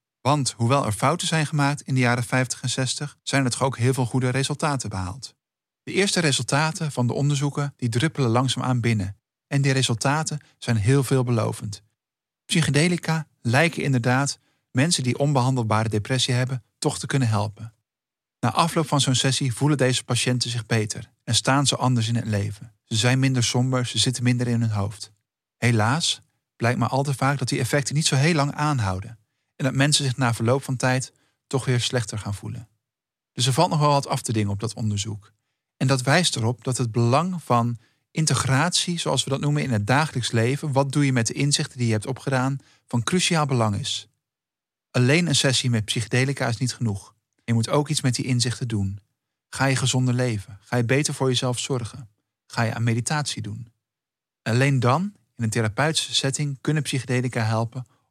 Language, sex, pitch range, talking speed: Dutch, male, 115-140 Hz, 190 wpm